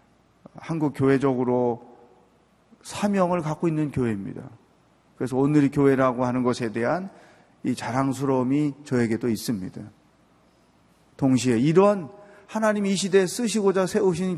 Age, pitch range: 40-59, 120-185 Hz